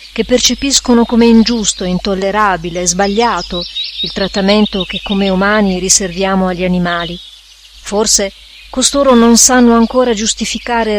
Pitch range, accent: 190-230 Hz, native